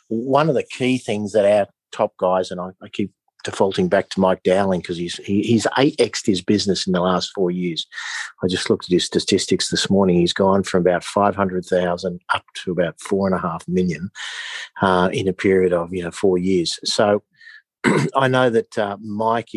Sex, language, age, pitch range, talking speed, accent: male, English, 50-69, 90-105 Hz, 210 wpm, Australian